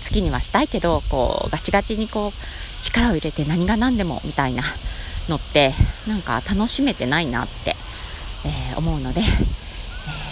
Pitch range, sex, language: 135-220 Hz, female, Japanese